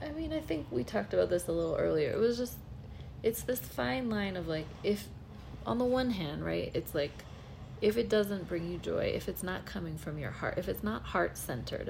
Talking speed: 225 wpm